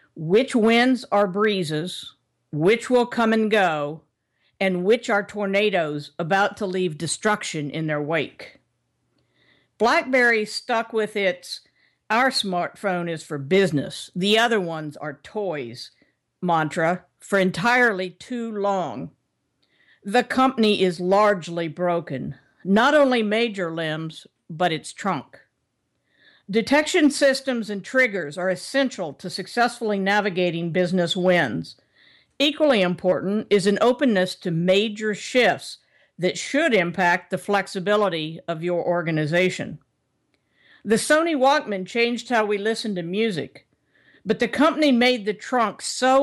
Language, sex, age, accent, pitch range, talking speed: English, female, 50-69, American, 175-230 Hz, 120 wpm